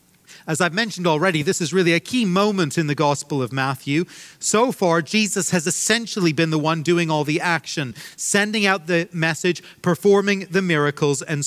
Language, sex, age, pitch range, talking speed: English, male, 40-59, 145-185 Hz, 185 wpm